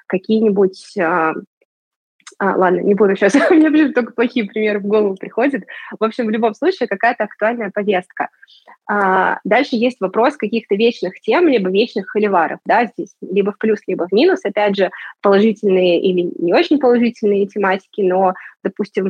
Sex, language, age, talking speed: female, Russian, 20-39, 160 wpm